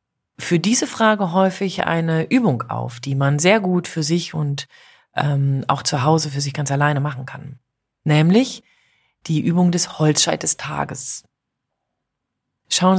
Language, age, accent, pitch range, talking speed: German, 30-49, German, 140-195 Hz, 150 wpm